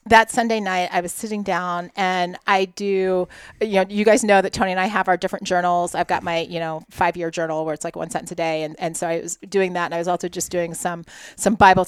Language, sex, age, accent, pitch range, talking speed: English, female, 30-49, American, 180-220 Hz, 270 wpm